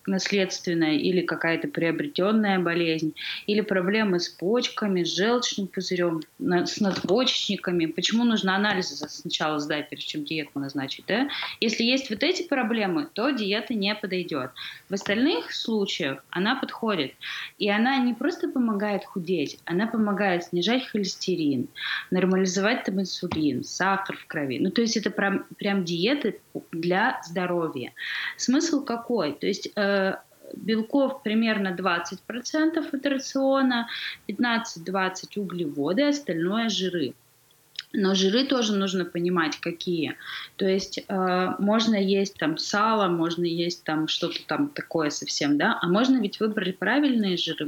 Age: 20-39